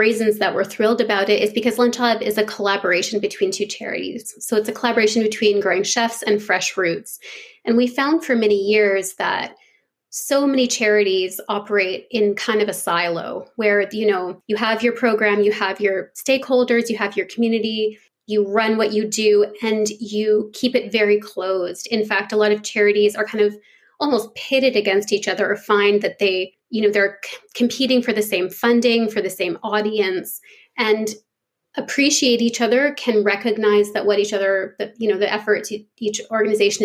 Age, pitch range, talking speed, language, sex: 20-39, 205-230 Hz, 185 wpm, English, female